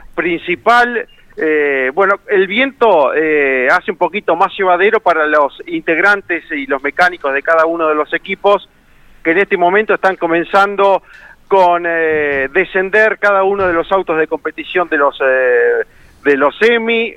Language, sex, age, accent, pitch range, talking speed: Spanish, male, 40-59, Argentinian, 155-200 Hz, 155 wpm